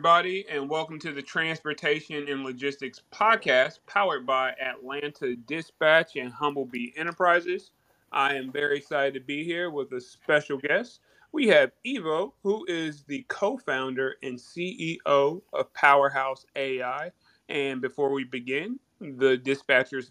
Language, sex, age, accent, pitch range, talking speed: English, male, 30-49, American, 135-180 Hz, 135 wpm